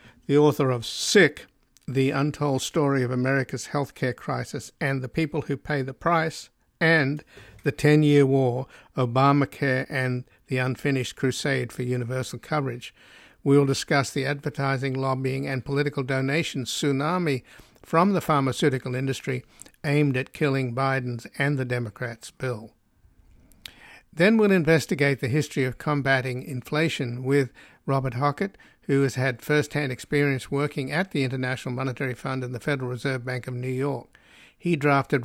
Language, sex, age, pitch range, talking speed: English, male, 60-79, 130-145 Hz, 145 wpm